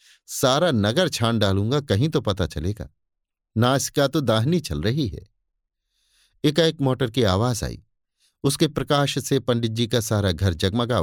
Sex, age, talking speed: male, 50-69, 160 wpm